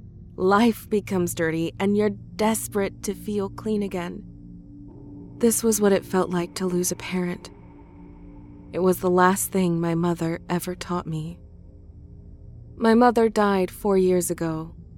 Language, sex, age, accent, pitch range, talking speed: English, female, 20-39, American, 145-200 Hz, 145 wpm